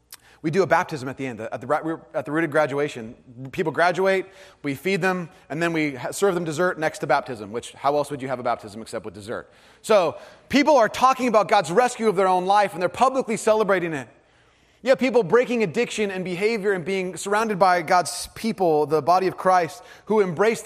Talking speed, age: 215 wpm, 30-49